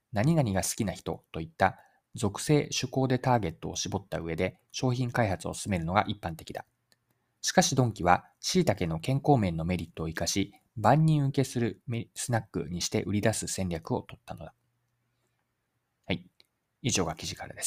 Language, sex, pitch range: Japanese, male, 90-130 Hz